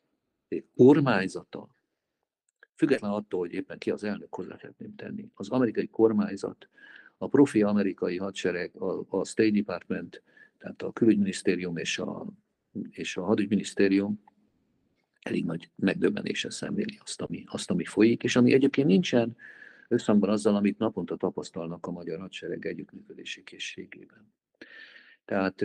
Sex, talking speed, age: male, 125 wpm, 50-69